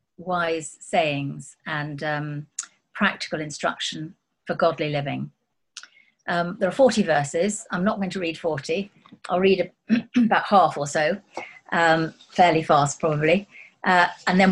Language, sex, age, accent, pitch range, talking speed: English, female, 50-69, British, 150-200 Hz, 140 wpm